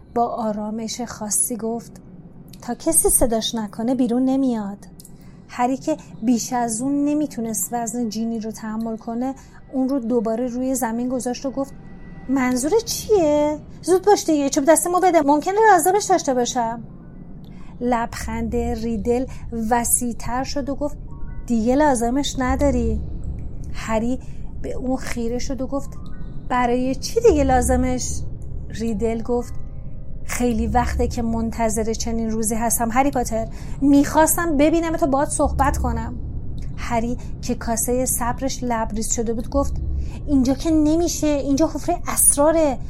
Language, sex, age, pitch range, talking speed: Persian, female, 30-49, 230-280 Hz, 130 wpm